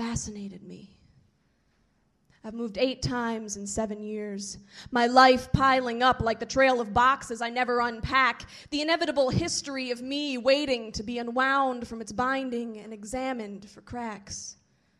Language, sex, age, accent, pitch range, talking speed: English, female, 20-39, American, 235-310 Hz, 150 wpm